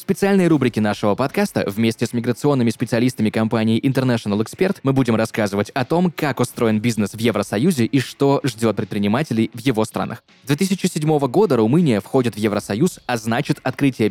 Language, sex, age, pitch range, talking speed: Russian, male, 20-39, 110-155 Hz, 160 wpm